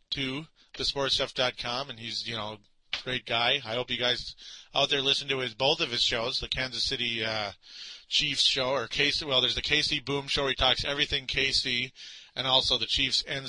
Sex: male